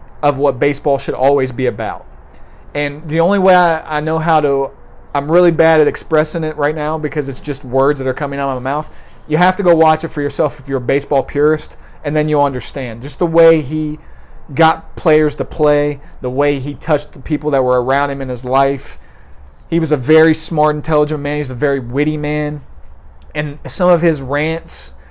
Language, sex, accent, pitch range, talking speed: English, male, American, 130-155 Hz, 215 wpm